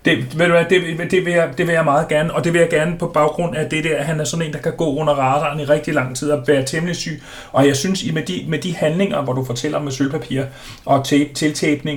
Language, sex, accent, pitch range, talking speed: Danish, male, native, 130-155 Hz, 285 wpm